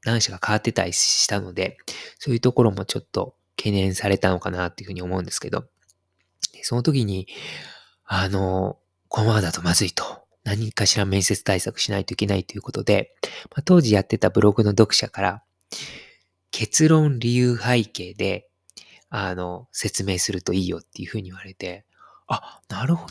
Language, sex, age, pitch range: Japanese, male, 20-39, 95-125 Hz